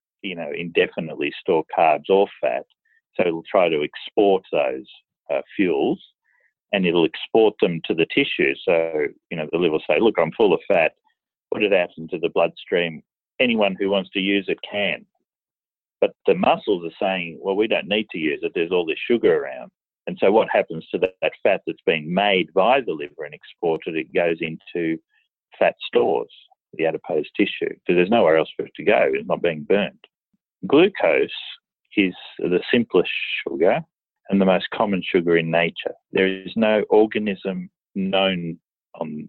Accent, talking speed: Australian, 180 wpm